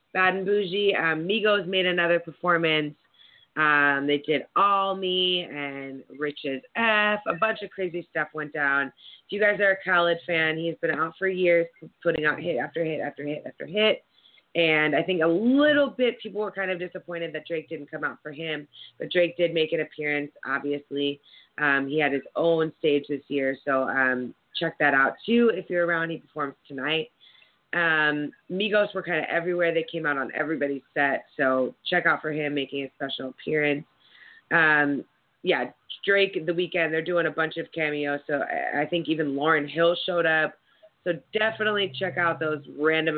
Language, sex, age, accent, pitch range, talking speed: English, female, 20-39, American, 145-180 Hz, 190 wpm